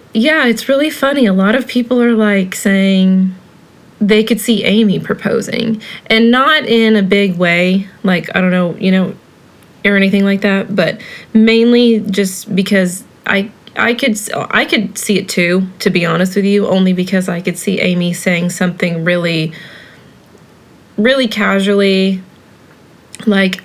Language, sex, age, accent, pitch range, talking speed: English, female, 20-39, American, 185-215 Hz, 155 wpm